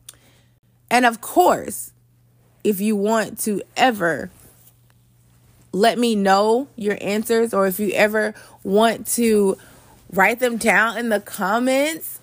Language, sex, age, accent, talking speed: English, female, 20-39, American, 125 wpm